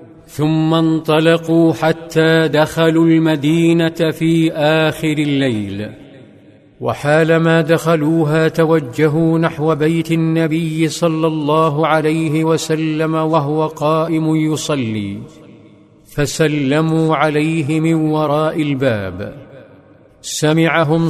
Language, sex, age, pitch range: Arabic, male, 50-69, 150-160 Hz